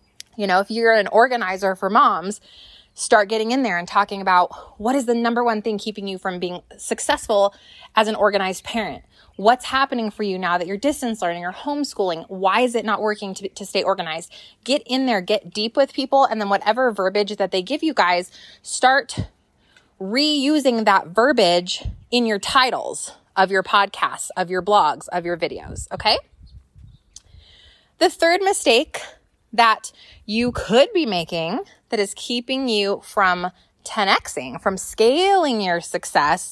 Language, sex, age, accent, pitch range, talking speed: English, female, 20-39, American, 195-250 Hz, 165 wpm